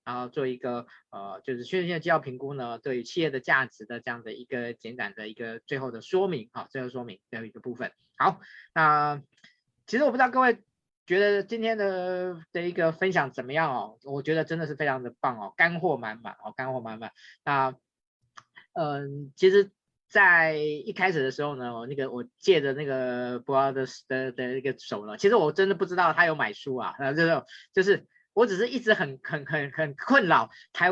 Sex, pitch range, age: male, 130-185 Hz, 20-39